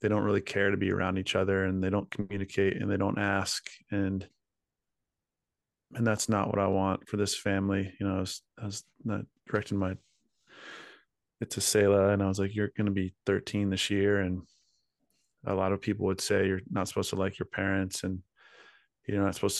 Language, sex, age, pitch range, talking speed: English, male, 30-49, 95-105 Hz, 210 wpm